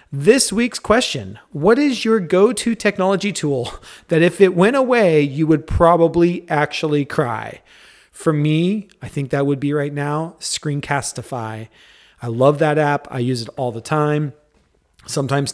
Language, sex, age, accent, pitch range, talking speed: English, male, 30-49, American, 130-170 Hz, 155 wpm